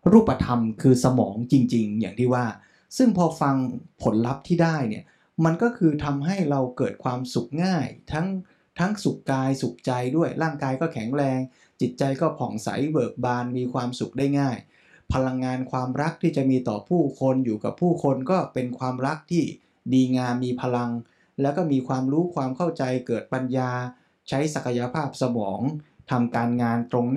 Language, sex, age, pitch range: Thai, male, 20-39, 125-165 Hz